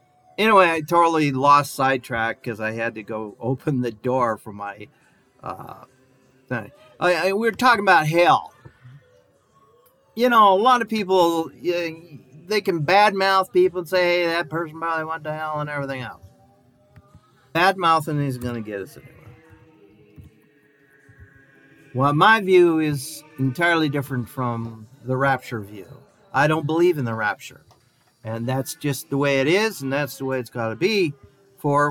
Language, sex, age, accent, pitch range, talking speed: English, male, 50-69, American, 125-170 Hz, 160 wpm